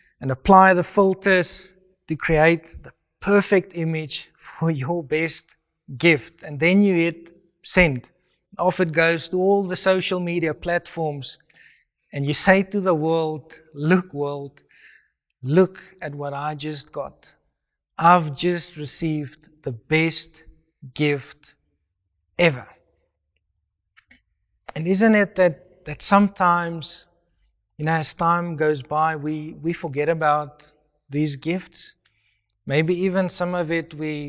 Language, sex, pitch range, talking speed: English, male, 150-175 Hz, 125 wpm